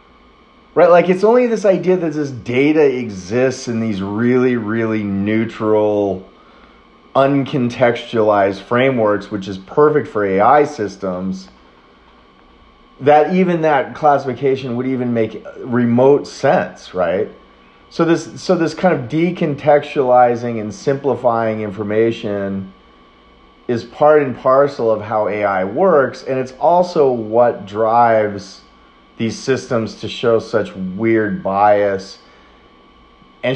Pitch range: 95-130 Hz